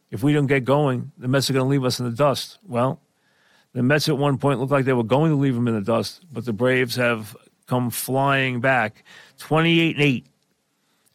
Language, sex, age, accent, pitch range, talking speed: English, male, 50-69, American, 115-140 Hz, 215 wpm